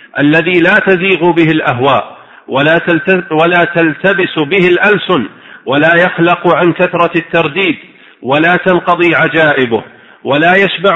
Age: 50-69